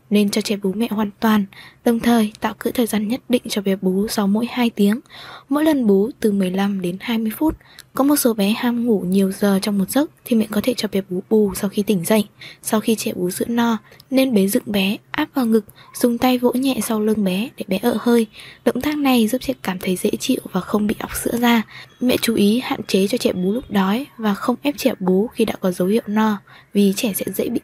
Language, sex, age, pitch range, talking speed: Vietnamese, female, 20-39, 200-240 Hz, 255 wpm